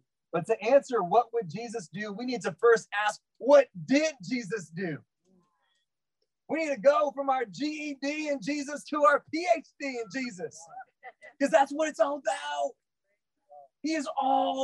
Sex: male